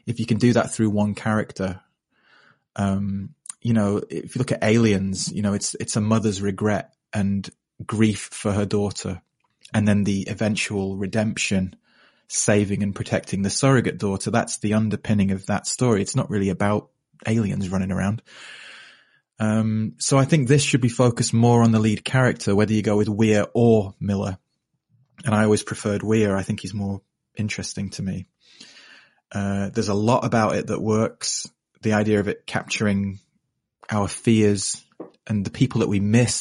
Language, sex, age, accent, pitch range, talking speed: English, male, 20-39, British, 100-115 Hz, 175 wpm